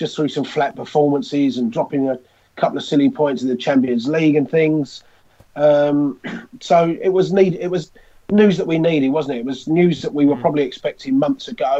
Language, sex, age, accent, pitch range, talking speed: English, male, 30-49, British, 130-150 Hz, 210 wpm